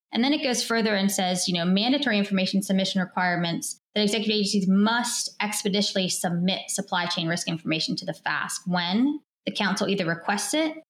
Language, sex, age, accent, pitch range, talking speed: English, female, 20-39, American, 175-210 Hz, 175 wpm